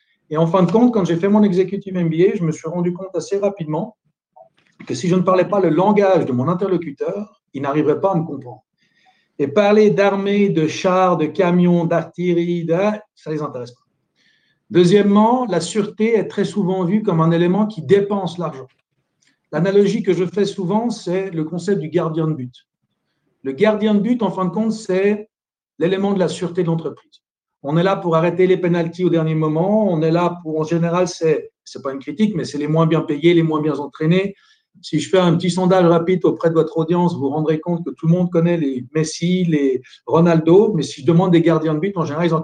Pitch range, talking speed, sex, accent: 160-195 Hz, 220 wpm, male, French